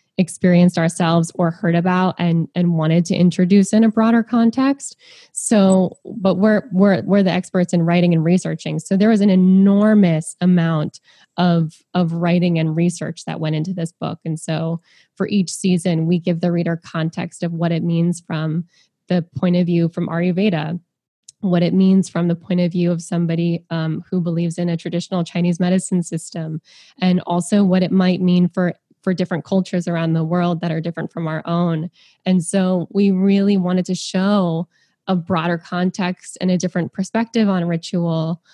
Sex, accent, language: female, American, English